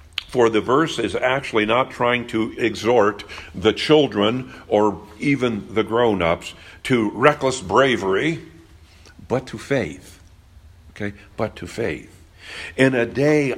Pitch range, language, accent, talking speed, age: 85-115 Hz, English, American, 130 wpm, 60-79